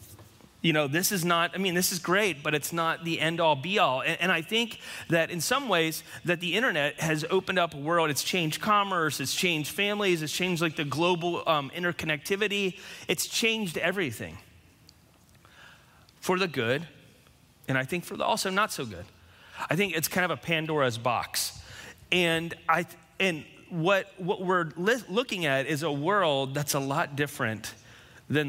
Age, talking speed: 30-49, 180 wpm